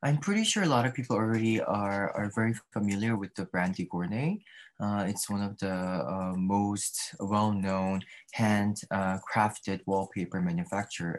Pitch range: 95-110 Hz